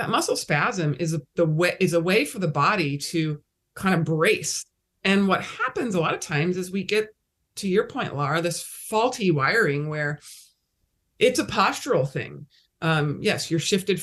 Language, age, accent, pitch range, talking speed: English, 30-49, American, 155-205 Hz, 180 wpm